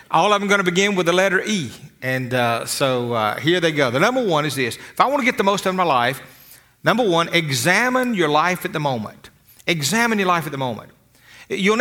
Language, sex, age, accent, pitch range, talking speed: English, male, 50-69, American, 140-185 Hz, 250 wpm